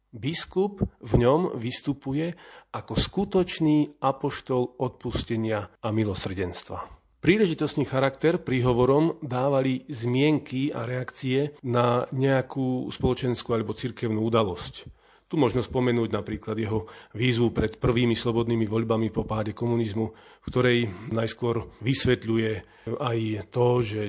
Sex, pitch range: male, 110-135 Hz